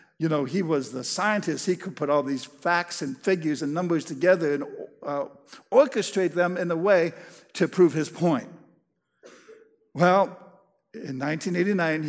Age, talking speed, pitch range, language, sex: 50-69, 155 wpm, 150-200 Hz, English, male